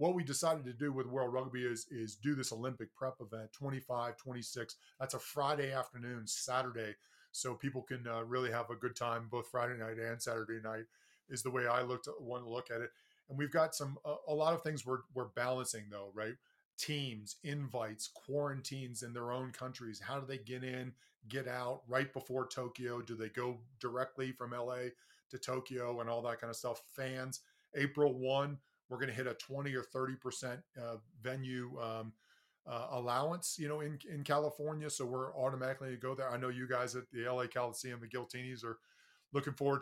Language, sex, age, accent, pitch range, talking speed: English, male, 40-59, American, 120-140 Hz, 200 wpm